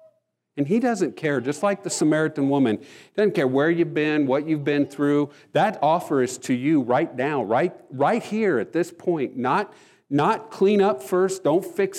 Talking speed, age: 195 wpm, 50-69